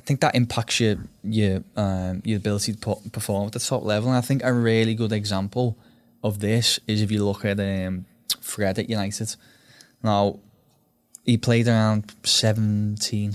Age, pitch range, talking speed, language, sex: 10-29, 100-115 Hz, 175 wpm, English, male